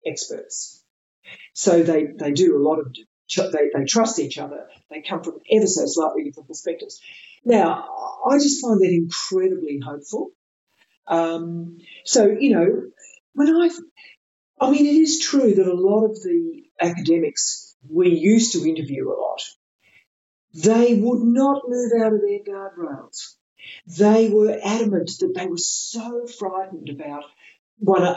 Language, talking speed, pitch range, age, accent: English, 150 wpm, 170-265 Hz, 50-69, Australian